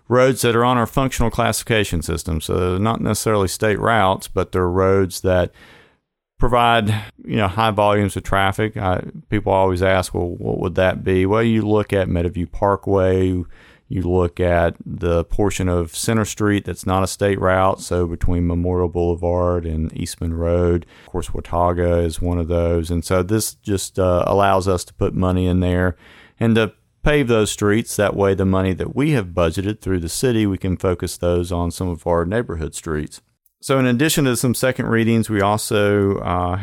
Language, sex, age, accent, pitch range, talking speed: English, male, 40-59, American, 90-110 Hz, 190 wpm